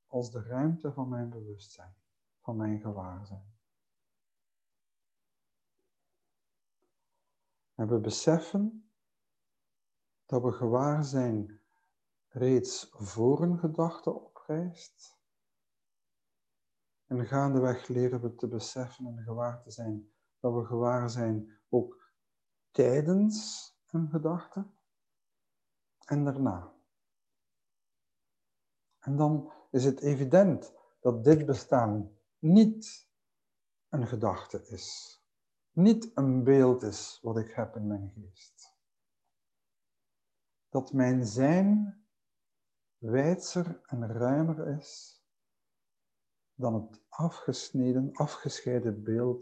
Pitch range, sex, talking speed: 110-155 Hz, male, 90 wpm